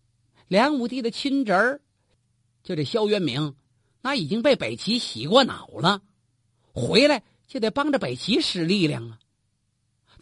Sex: male